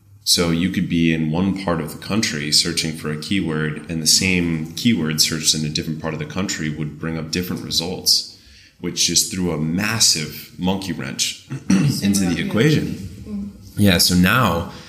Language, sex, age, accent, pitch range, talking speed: German, male, 20-39, American, 75-90 Hz, 175 wpm